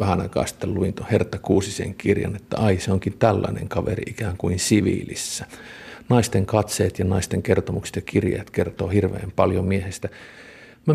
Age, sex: 50-69, male